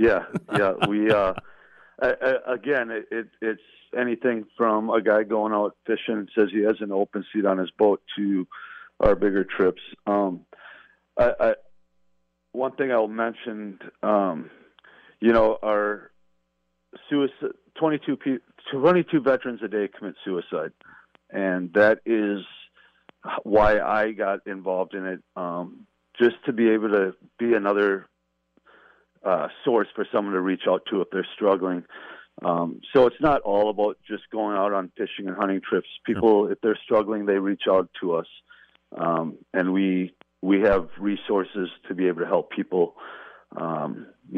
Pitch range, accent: 90-110 Hz, American